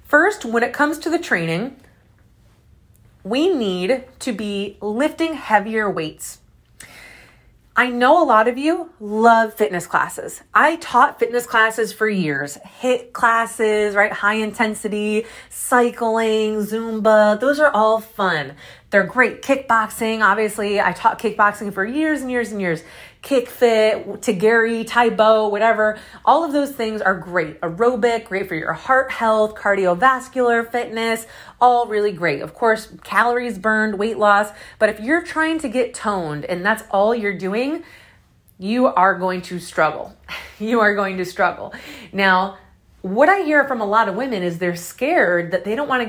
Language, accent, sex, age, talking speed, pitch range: English, American, female, 30-49, 155 wpm, 200-250 Hz